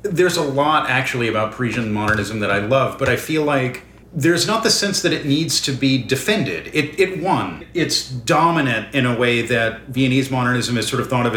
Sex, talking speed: male, 210 wpm